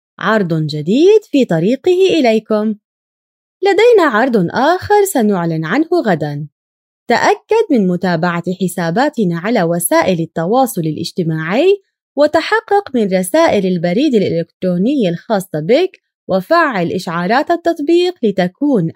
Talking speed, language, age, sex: 95 wpm, Arabic, 20-39, female